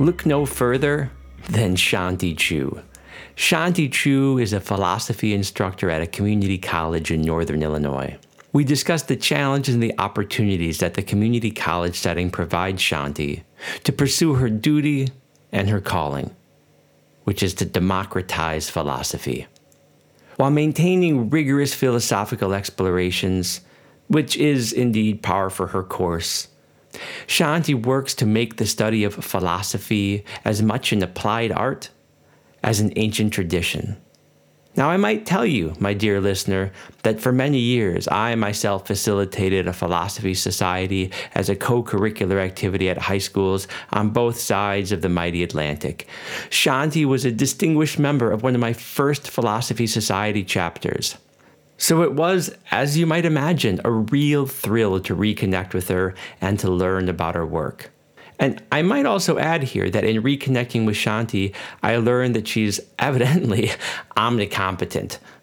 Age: 50-69